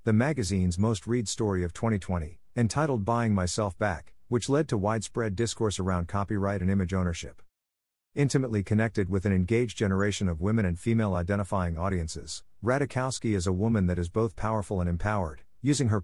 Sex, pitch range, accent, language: male, 90-115 Hz, American, English